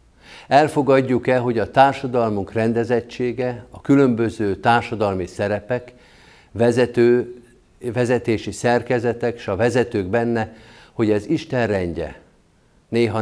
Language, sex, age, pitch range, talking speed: Hungarian, male, 50-69, 105-125 Hz, 95 wpm